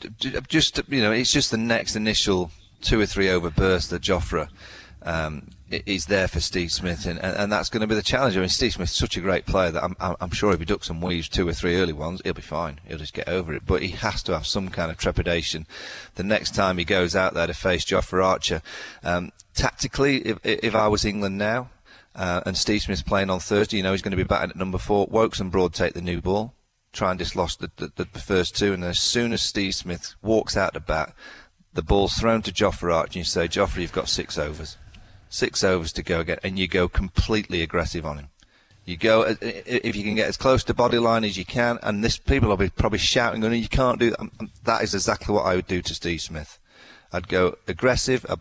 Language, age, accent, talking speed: English, 30-49, British, 240 wpm